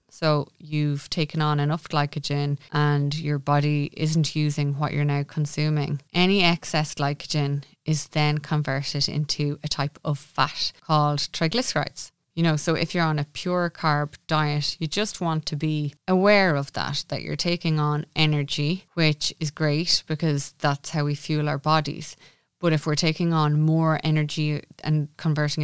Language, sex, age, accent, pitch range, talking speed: English, female, 20-39, Irish, 145-160 Hz, 165 wpm